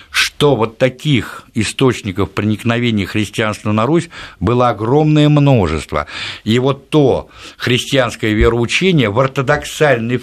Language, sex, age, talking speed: Russian, male, 60-79, 105 wpm